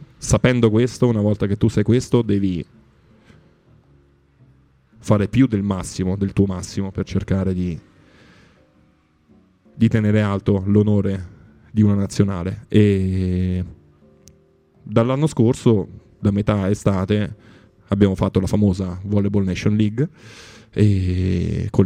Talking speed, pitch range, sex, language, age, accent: 115 wpm, 95-110 Hz, male, Italian, 20-39, native